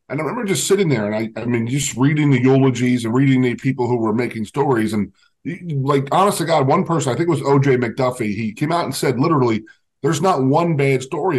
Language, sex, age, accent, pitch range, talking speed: English, male, 40-59, American, 120-155 Hz, 240 wpm